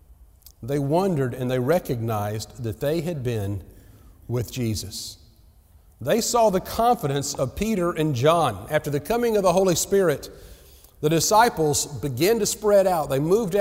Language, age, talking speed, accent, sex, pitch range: English, 40-59, 150 wpm, American, male, 130-200 Hz